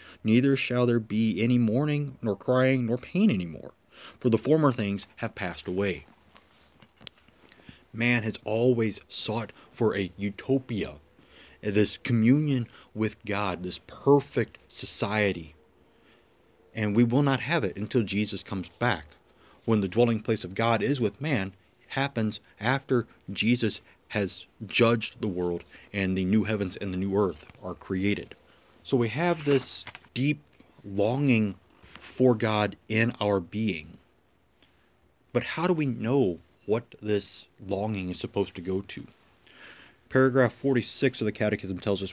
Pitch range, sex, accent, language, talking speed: 100-130 Hz, male, American, English, 140 wpm